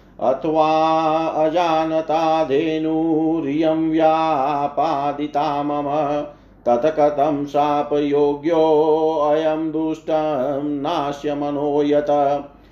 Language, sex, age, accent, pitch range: Hindi, male, 50-69, native, 145-160 Hz